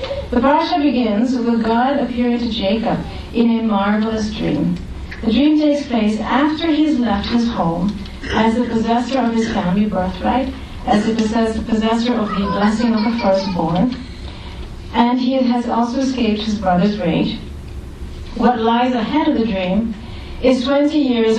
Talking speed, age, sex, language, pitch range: 155 wpm, 40-59, female, English, 210-250 Hz